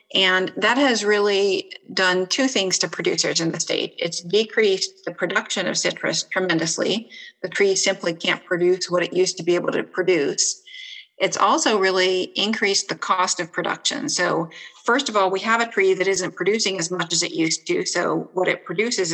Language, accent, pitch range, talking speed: English, American, 180-215 Hz, 190 wpm